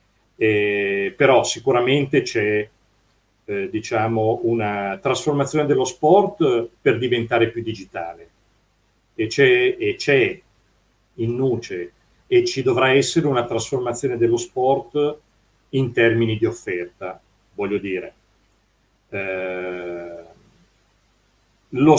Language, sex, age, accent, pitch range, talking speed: Italian, male, 40-59, native, 110-175 Hz, 100 wpm